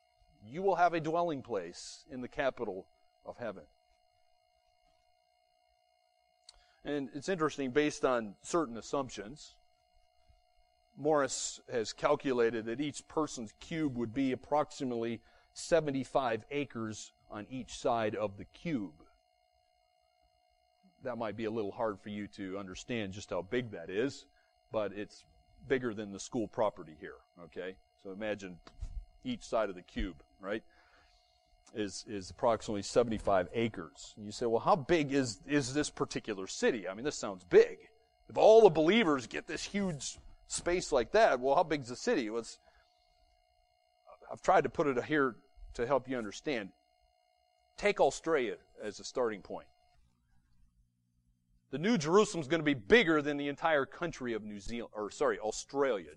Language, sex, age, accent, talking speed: English, male, 40-59, American, 150 wpm